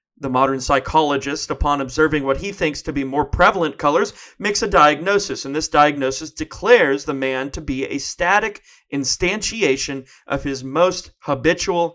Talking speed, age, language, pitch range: 155 wpm, 40-59, English, 140-185 Hz